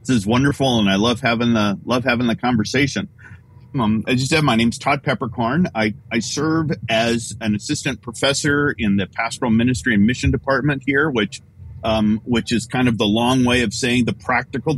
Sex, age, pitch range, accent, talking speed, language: male, 40-59, 105-130 Hz, American, 200 wpm, English